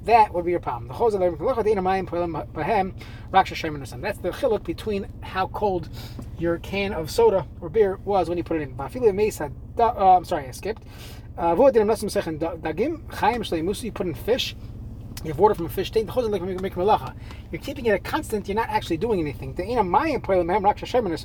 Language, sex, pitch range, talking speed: English, male, 165-235 Hz, 140 wpm